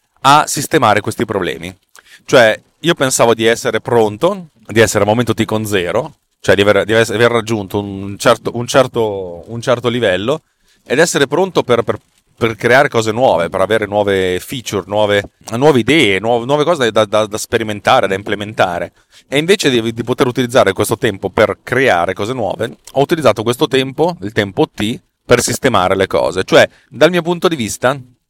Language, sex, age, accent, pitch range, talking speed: Italian, male, 30-49, native, 100-125 Hz, 180 wpm